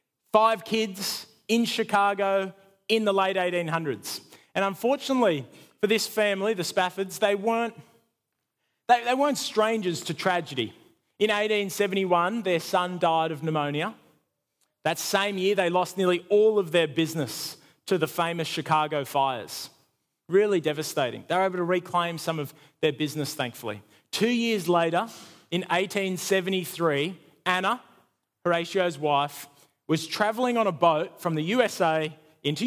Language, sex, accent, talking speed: English, male, Australian, 130 wpm